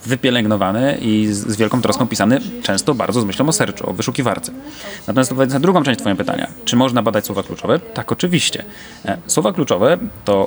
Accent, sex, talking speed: native, male, 180 wpm